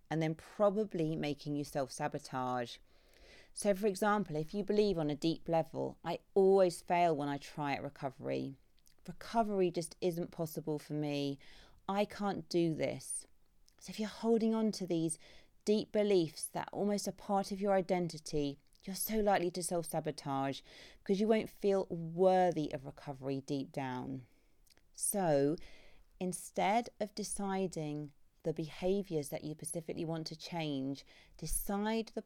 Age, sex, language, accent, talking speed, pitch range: 30-49, female, English, British, 145 wpm, 145-195 Hz